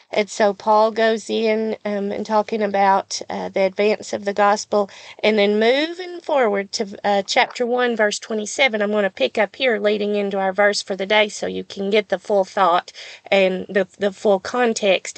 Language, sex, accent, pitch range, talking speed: English, female, American, 195-235 Hz, 200 wpm